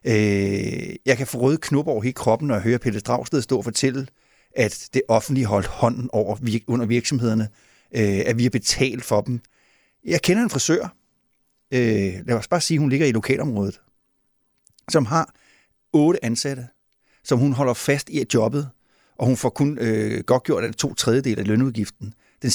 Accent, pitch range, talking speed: native, 110-145 Hz, 165 wpm